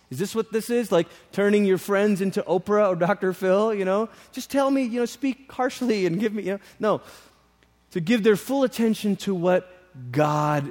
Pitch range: 165-215 Hz